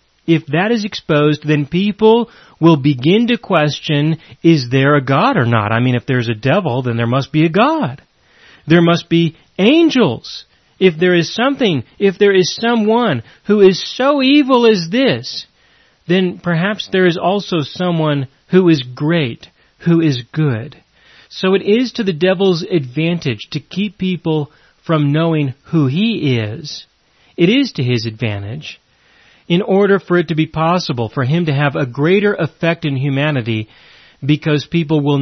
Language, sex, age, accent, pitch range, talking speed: English, male, 40-59, American, 135-195 Hz, 165 wpm